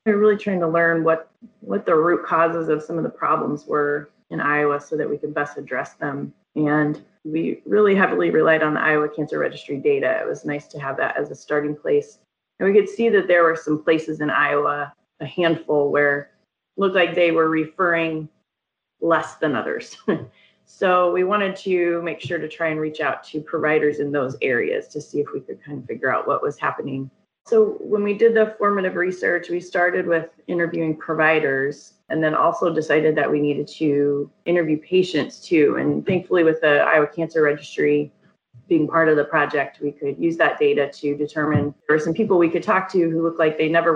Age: 30-49